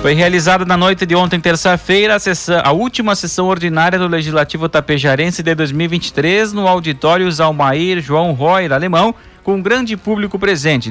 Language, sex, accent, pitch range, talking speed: Portuguese, male, Brazilian, 145-185 Hz, 165 wpm